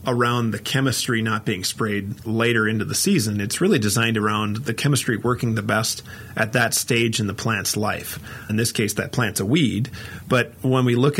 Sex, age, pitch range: male, 40-59, 110-125 Hz